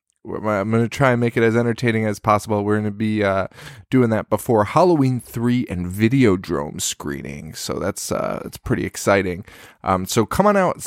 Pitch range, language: 100-130 Hz, English